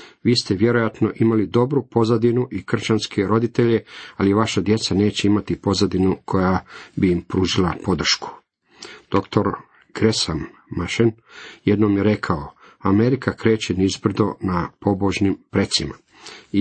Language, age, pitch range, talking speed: Croatian, 40-59, 100-115 Hz, 120 wpm